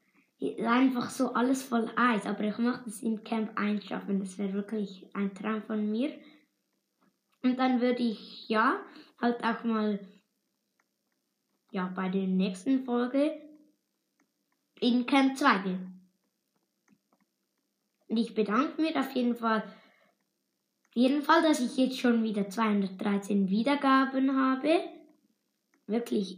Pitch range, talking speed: 210-265 Hz, 125 wpm